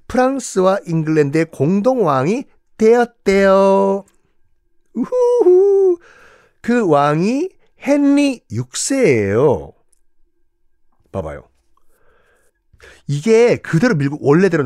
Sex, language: male, Korean